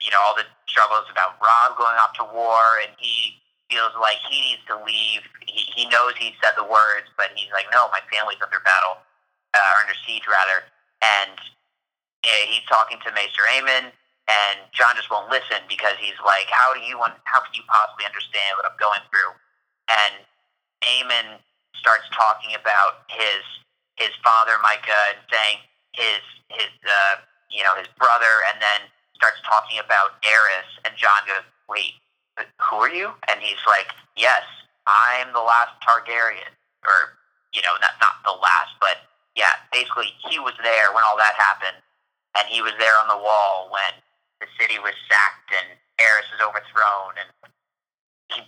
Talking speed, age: 175 wpm, 30-49